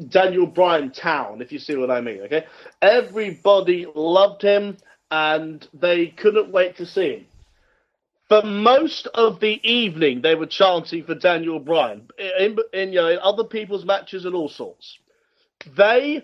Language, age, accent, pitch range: English, 40-59, British, 175-240 Hz